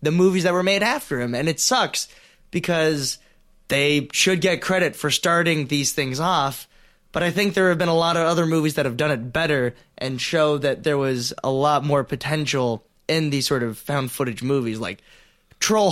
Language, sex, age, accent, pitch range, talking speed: English, male, 20-39, American, 130-170 Hz, 205 wpm